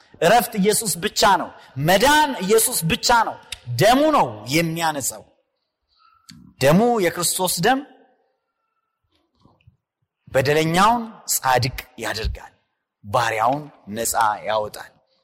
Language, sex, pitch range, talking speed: Amharic, male, 165-235 Hz, 80 wpm